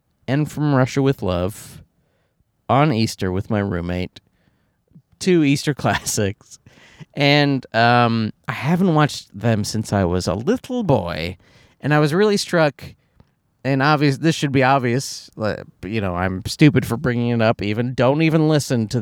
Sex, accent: male, American